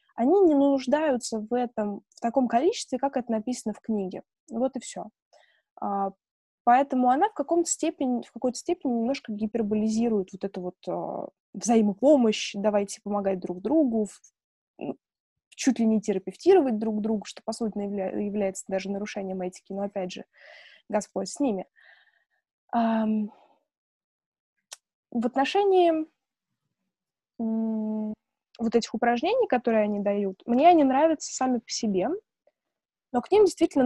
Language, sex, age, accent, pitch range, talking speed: Russian, female, 20-39, native, 205-275 Hz, 120 wpm